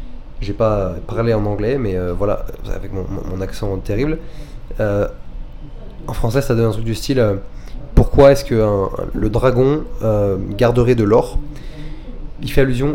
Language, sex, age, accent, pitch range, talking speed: French, male, 20-39, French, 100-130 Hz, 170 wpm